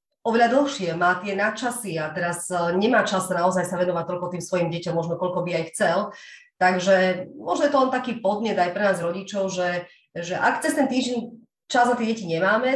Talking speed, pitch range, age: 200 wpm, 170-195 Hz, 30-49